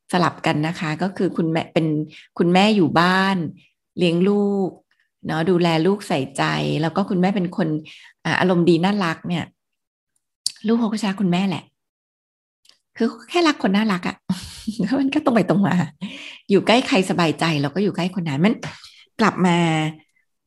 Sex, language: female, Thai